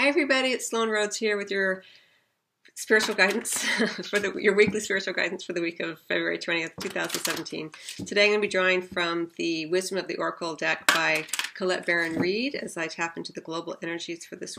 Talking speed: 200 wpm